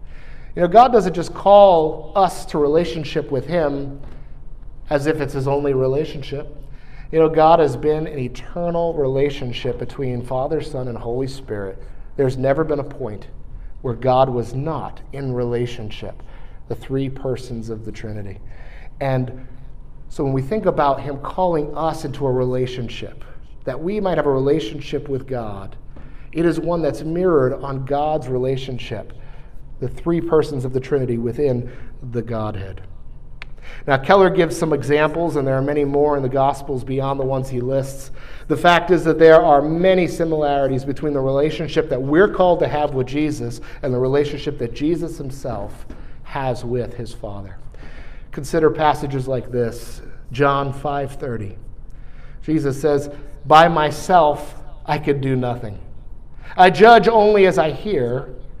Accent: American